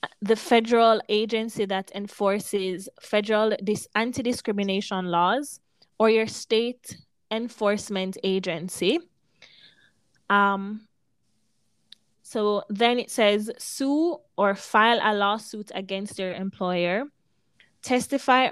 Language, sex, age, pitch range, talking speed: English, female, 20-39, 195-235 Hz, 90 wpm